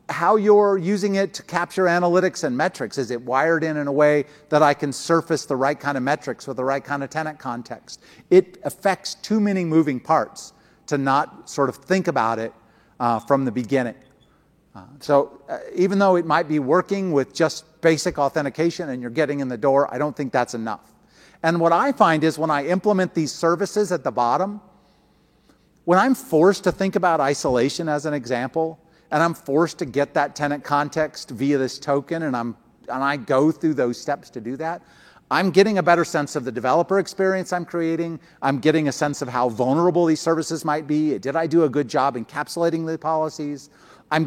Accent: American